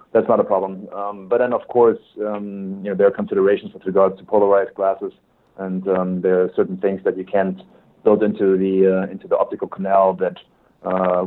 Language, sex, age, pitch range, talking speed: English, male, 30-49, 95-105 Hz, 210 wpm